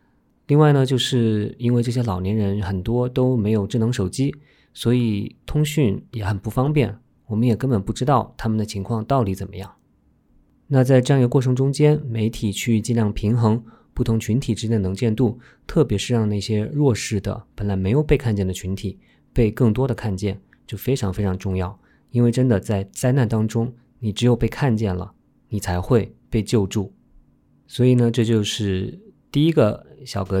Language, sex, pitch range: Chinese, male, 100-125 Hz